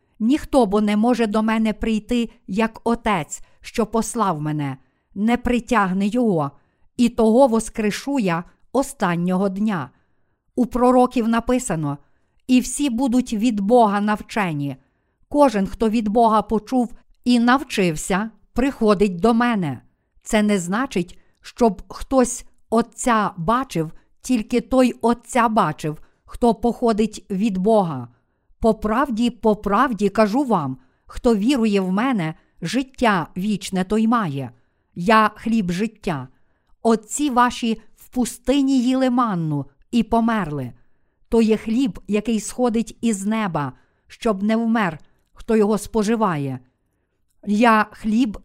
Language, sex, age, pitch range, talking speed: Ukrainian, female, 50-69, 185-240 Hz, 120 wpm